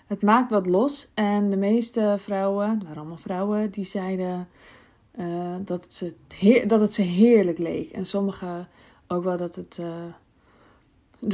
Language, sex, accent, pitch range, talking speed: Dutch, female, Dutch, 185-230 Hz, 165 wpm